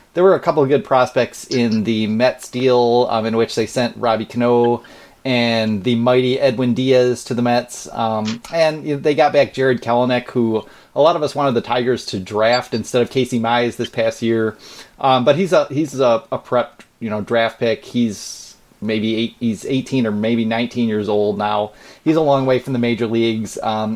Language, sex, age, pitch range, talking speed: English, male, 30-49, 115-140 Hz, 205 wpm